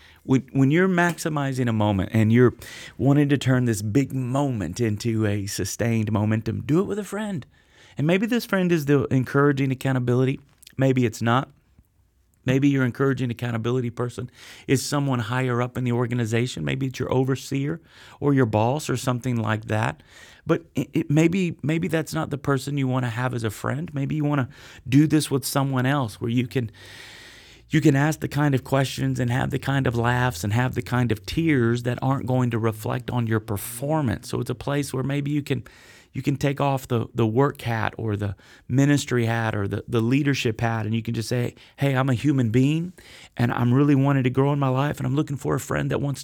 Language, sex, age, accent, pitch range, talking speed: English, male, 30-49, American, 120-145 Hz, 210 wpm